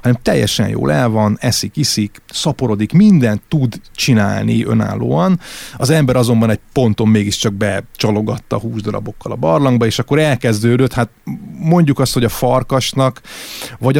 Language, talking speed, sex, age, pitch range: Hungarian, 135 wpm, male, 30-49, 110-130 Hz